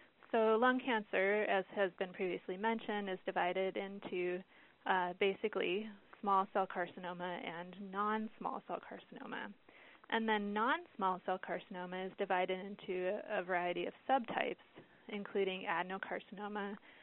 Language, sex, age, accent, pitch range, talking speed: English, female, 20-39, American, 185-220 Hz, 120 wpm